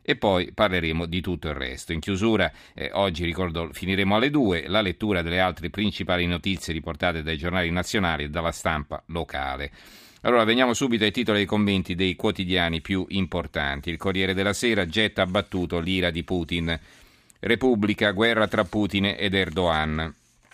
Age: 40-59